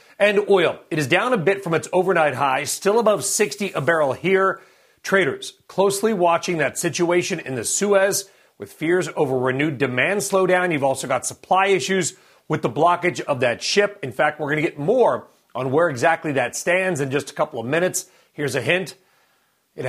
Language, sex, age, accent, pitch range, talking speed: English, male, 40-59, American, 145-195 Hz, 195 wpm